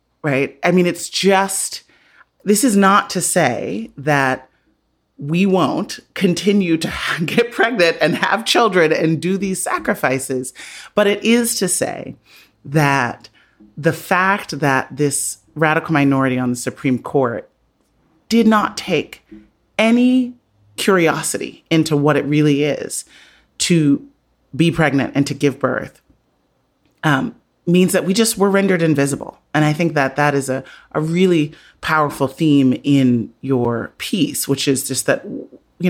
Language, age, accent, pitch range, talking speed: English, 30-49, American, 130-175 Hz, 140 wpm